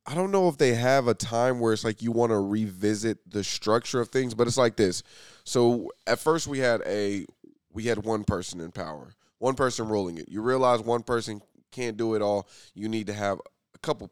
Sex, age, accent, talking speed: male, 20-39, American, 225 wpm